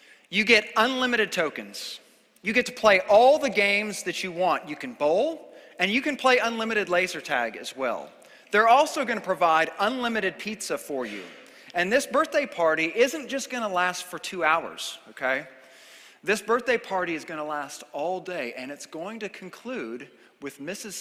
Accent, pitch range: American, 180-255 Hz